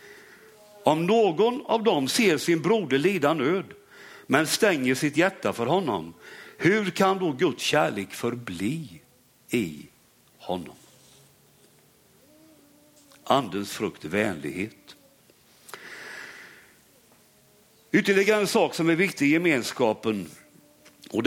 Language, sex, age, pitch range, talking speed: Swedish, male, 60-79, 150-210 Hz, 95 wpm